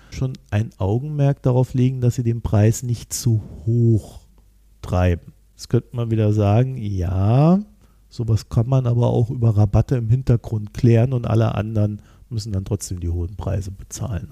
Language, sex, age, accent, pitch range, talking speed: German, male, 50-69, German, 105-125 Hz, 165 wpm